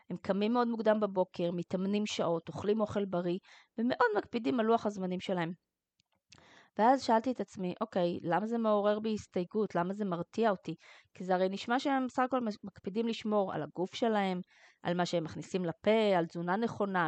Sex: female